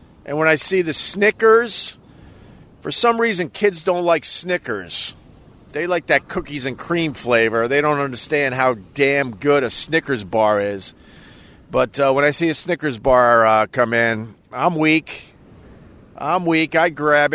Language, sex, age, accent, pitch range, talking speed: English, male, 50-69, American, 135-200 Hz, 165 wpm